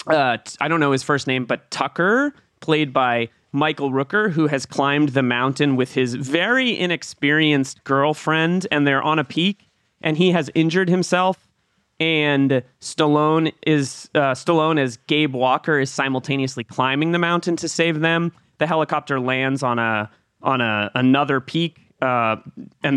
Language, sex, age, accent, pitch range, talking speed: English, male, 30-49, American, 130-160 Hz, 160 wpm